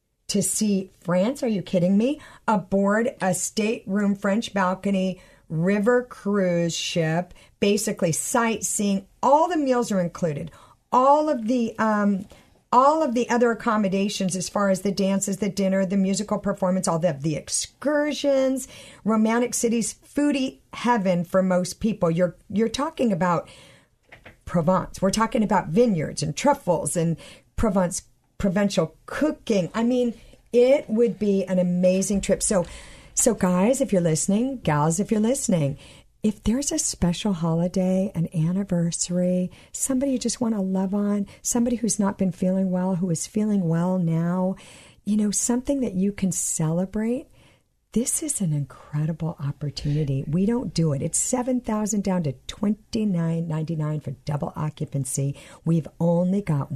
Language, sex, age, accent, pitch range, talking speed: English, female, 50-69, American, 165-220 Hz, 145 wpm